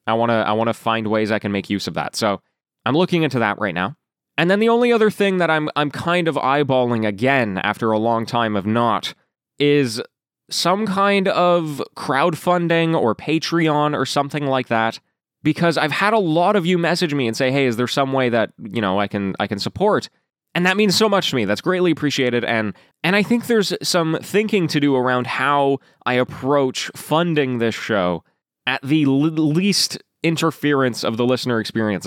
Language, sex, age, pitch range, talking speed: English, male, 20-39, 115-165 Hz, 205 wpm